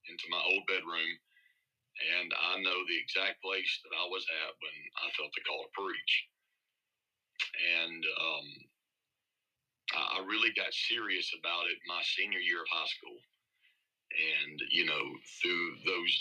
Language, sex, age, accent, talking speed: English, male, 40-59, American, 150 wpm